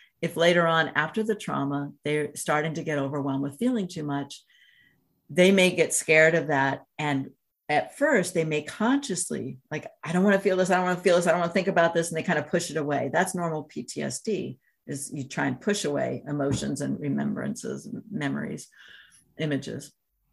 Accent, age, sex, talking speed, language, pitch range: American, 50-69, female, 200 wpm, English, 140-175 Hz